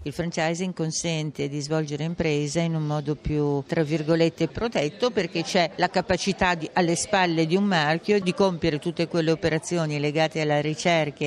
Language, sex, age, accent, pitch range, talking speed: Italian, female, 50-69, native, 155-185 Hz, 165 wpm